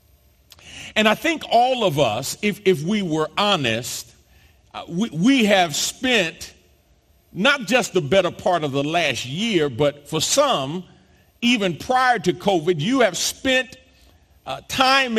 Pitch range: 125-210 Hz